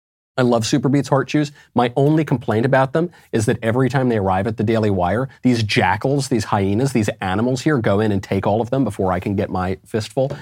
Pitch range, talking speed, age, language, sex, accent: 110-155 Hz, 230 wpm, 30-49, English, male, American